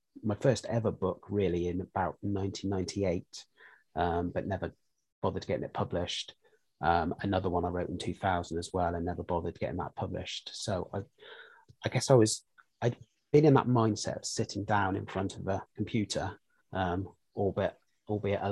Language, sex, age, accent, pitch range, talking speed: English, male, 30-49, British, 95-110 Hz, 170 wpm